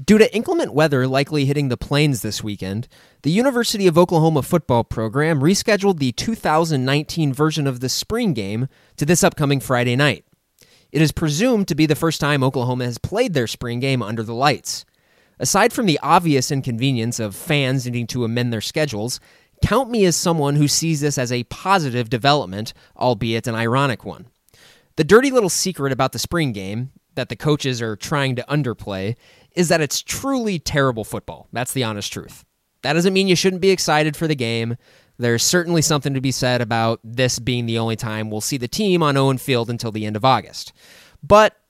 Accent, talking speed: American, 190 wpm